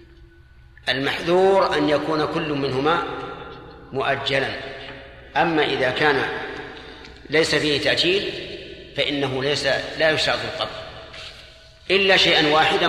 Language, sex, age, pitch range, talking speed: Arabic, male, 40-59, 135-170 Hz, 95 wpm